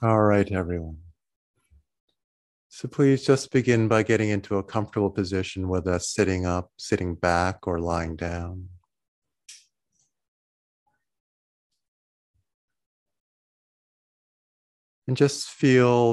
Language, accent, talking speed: English, American, 90 wpm